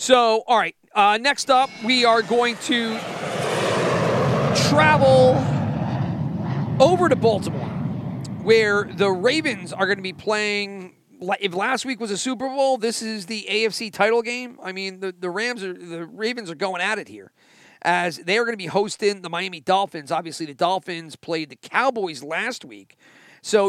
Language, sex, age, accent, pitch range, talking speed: English, male, 40-59, American, 160-220 Hz, 160 wpm